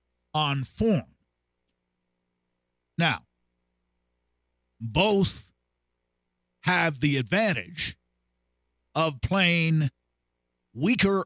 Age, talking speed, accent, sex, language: 50-69, 55 wpm, American, male, English